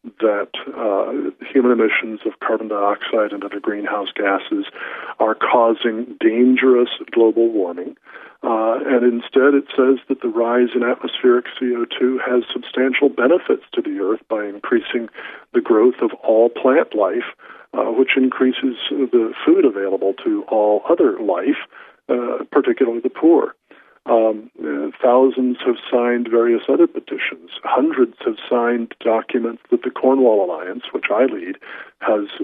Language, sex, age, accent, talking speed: English, male, 50-69, American, 135 wpm